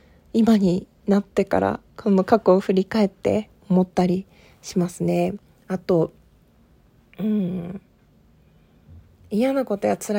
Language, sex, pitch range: Japanese, female, 190-245 Hz